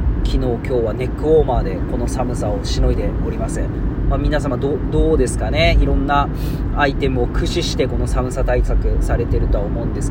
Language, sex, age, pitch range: Japanese, male, 40-59, 110-140 Hz